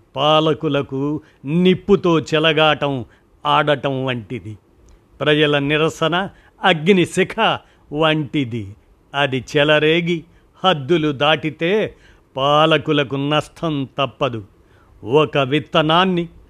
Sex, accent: male, native